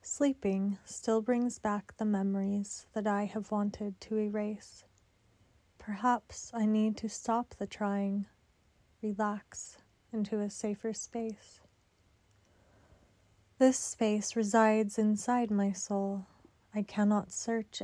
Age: 30-49